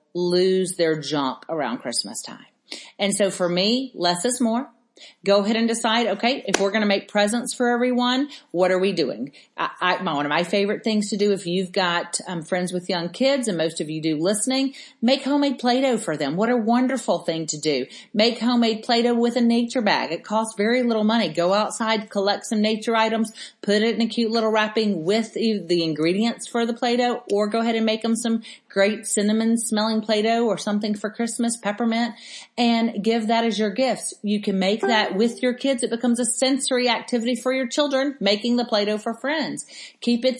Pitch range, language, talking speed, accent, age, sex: 195-240 Hz, English, 205 wpm, American, 40-59, female